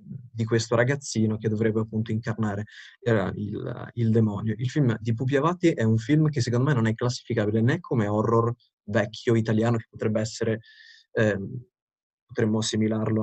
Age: 20-39